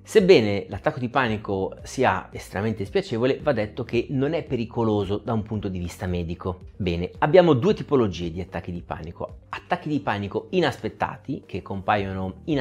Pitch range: 95-135 Hz